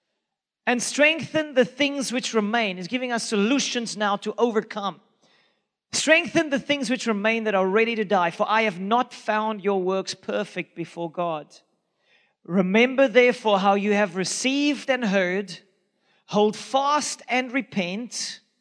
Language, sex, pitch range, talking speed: English, male, 190-235 Hz, 145 wpm